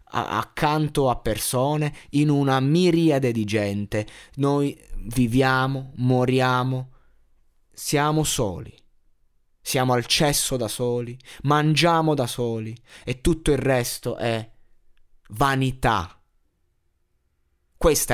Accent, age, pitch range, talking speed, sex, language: native, 20-39, 100-130 Hz, 95 wpm, male, Italian